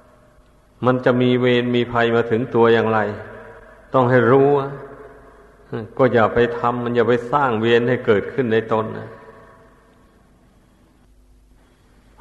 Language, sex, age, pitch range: Thai, male, 60-79, 110-130 Hz